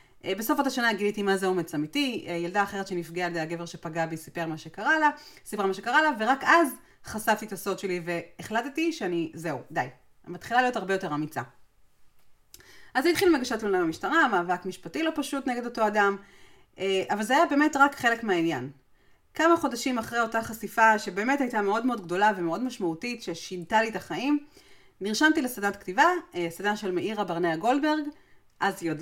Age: 30-49